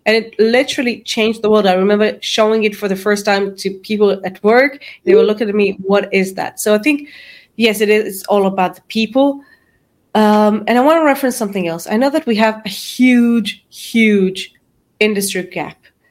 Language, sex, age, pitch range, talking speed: English, female, 20-39, 195-235 Hz, 205 wpm